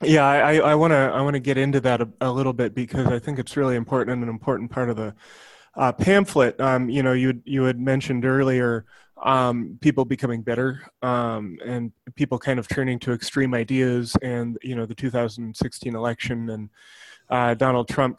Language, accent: English, American